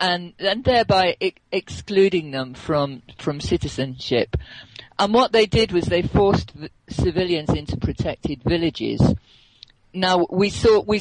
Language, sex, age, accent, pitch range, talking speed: English, female, 40-59, British, 130-180 Hz, 135 wpm